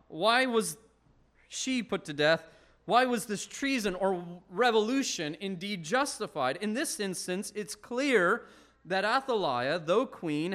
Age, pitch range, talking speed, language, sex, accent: 30-49, 170-245 Hz, 130 wpm, English, male, American